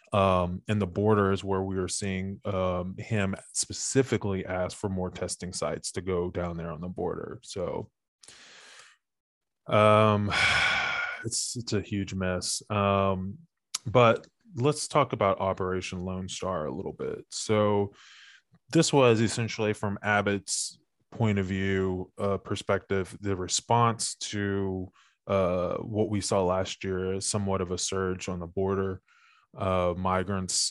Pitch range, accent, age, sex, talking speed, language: 95-105 Hz, American, 20-39, male, 140 wpm, English